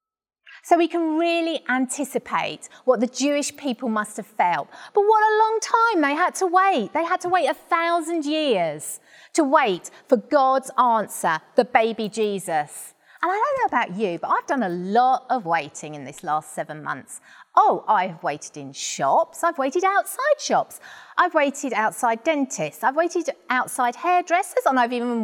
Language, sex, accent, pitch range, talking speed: English, female, British, 215-335 Hz, 175 wpm